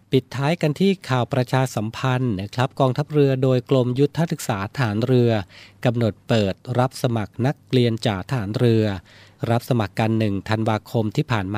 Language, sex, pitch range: Thai, male, 105-130 Hz